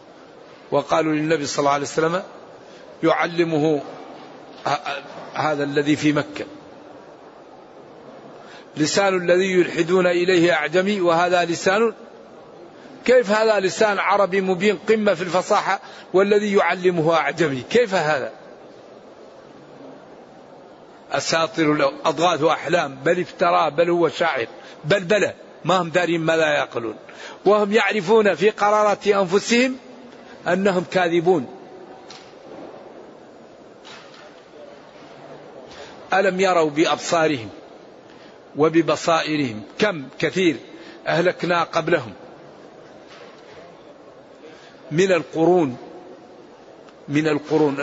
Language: Arabic